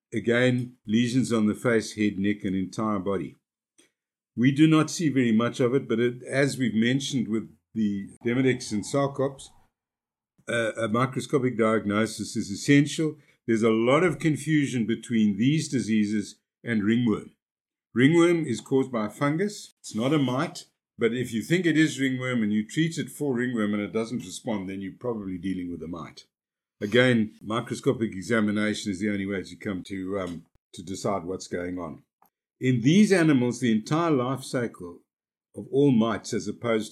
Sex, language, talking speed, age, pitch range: male, English, 170 wpm, 50-69, 105-135 Hz